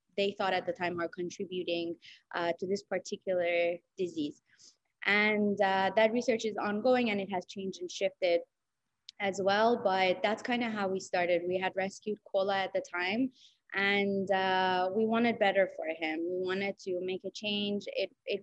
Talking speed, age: 180 wpm, 20-39